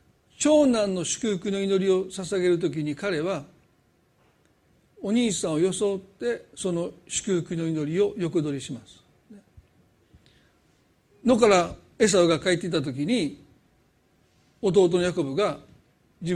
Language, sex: Japanese, male